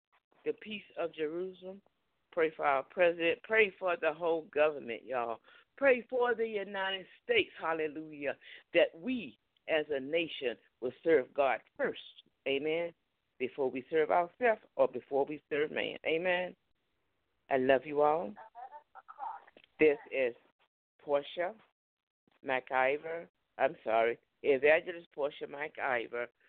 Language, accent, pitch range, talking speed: English, American, 135-195 Hz, 120 wpm